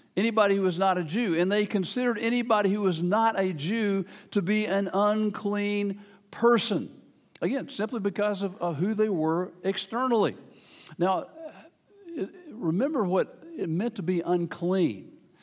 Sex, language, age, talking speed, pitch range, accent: male, English, 50-69, 145 wpm, 180-230 Hz, American